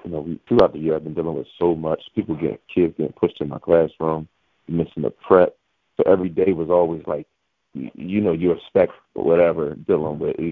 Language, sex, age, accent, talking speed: English, male, 30-49, American, 210 wpm